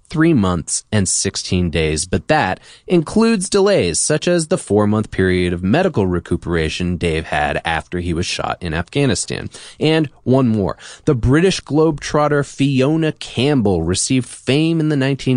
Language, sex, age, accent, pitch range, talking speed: English, male, 30-49, American, 90-145 Hz, 145 wpm